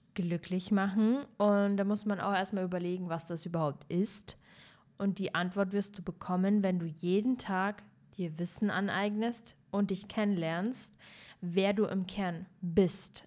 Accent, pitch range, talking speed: German, 185-220 Hz, 155 wpm